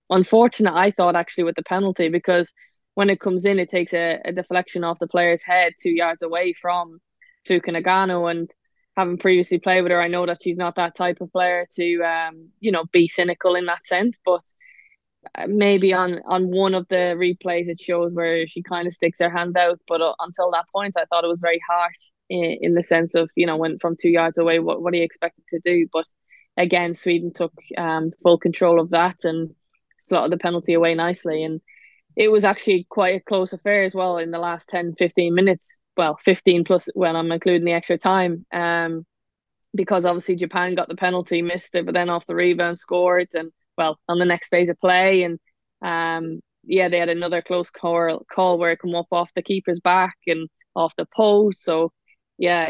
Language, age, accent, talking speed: English, 20-39, Irish, 210 wpm